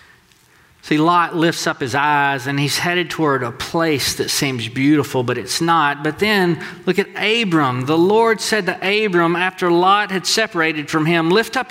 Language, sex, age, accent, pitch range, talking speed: English, male, 40-59, American, 195-245 Hz, 185 wpm